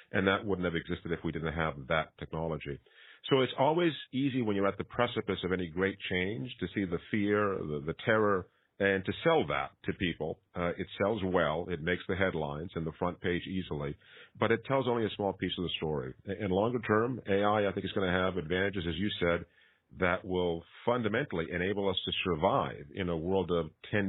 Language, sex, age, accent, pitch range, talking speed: English, male, 50-69, American, 85-105 Hz, 215 wpm